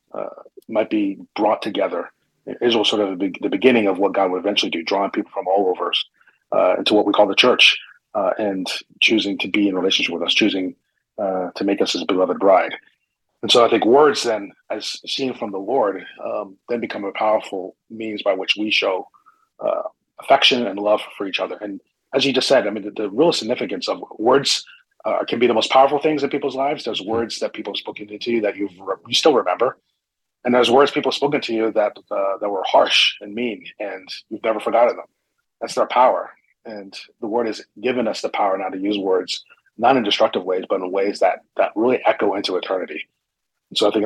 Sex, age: male, 30-49